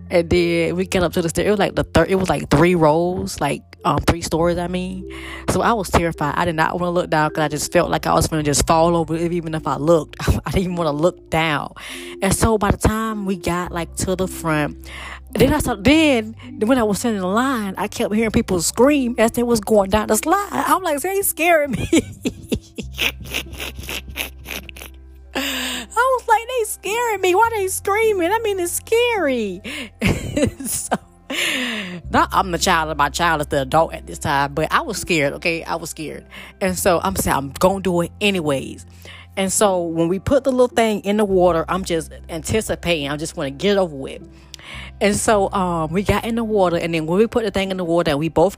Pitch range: 155-225 Hz